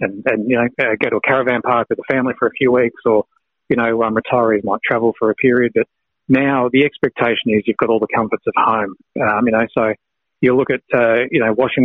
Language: English